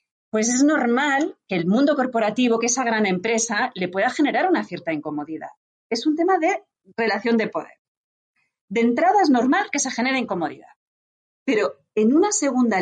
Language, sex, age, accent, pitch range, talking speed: Spanish, female, 30-49, Spanish, 195-285 Hz, 170 wpm